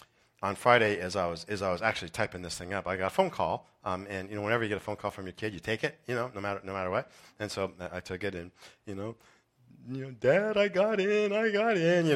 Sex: male